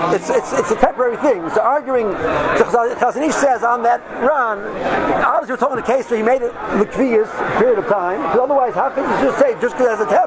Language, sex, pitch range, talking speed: English, male, 230-280 Hz, 220 wpm